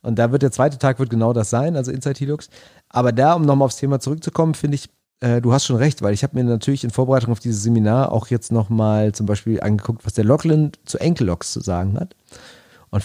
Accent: German